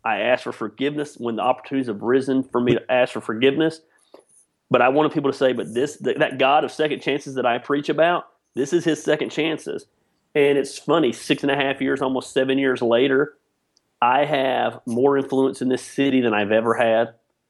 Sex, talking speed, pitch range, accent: male, 205 wpm, 120-145 Hz, American